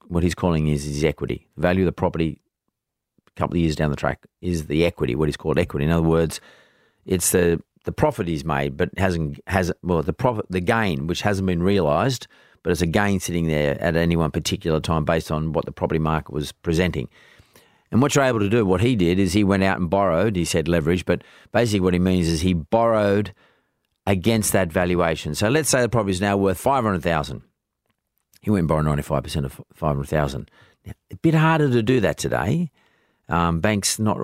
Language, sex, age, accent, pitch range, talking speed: English, male, 40-59, Australian, 80-100 Hz, 215 wpm